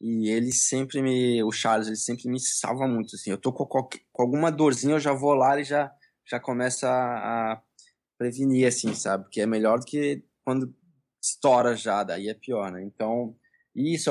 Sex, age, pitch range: male, 20-39, 110-130 Hz